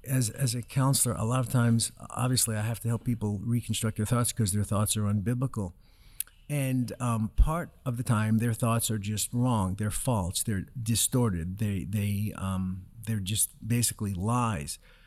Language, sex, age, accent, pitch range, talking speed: English, male, 50-69, American, 110-150 Hz, 175 wpm